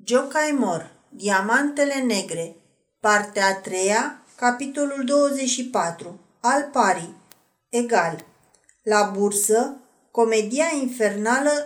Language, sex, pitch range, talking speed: Romanian, female, 215-270 Hz, 75 wpm